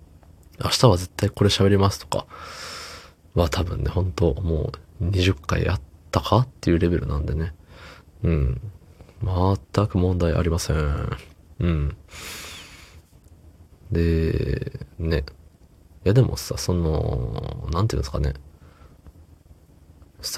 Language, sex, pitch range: Japanese, male, 80-100 Hz